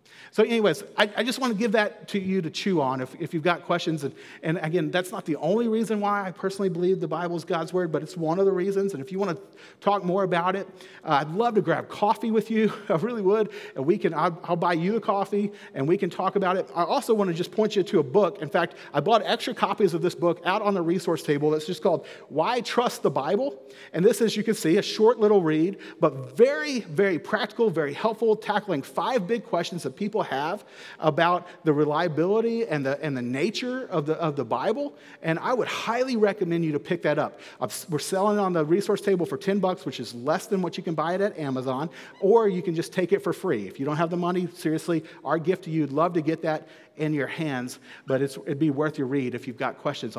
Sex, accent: male, American